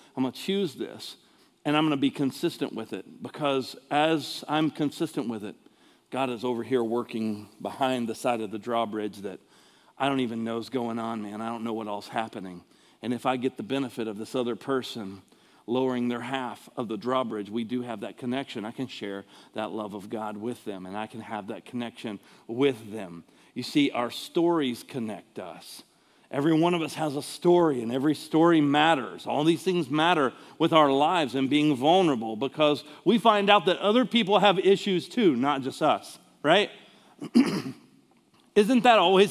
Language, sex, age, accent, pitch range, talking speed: English, male, 40-59, American, 115-155 Hz, 195 wpm